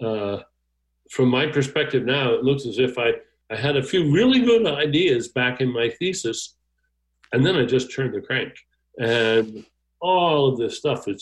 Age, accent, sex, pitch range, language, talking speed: 60-79, American, male, 105-145 Hz, English, 180 wpm